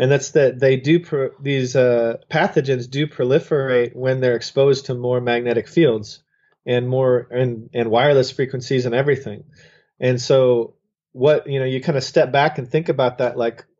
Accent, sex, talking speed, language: American, male, 180 wpm, English